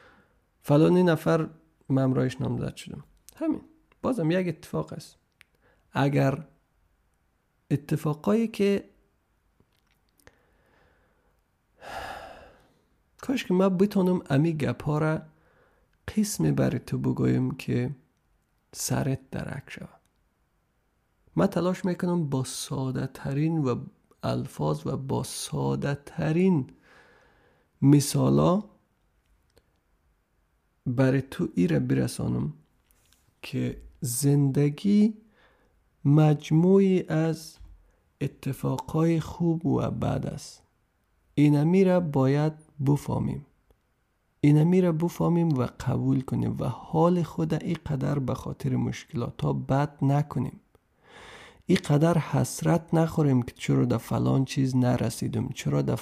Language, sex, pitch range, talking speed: Persian, male, 120-165 Hz, 95 wpm